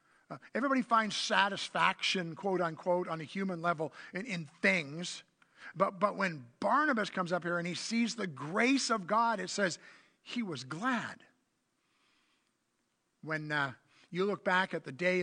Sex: male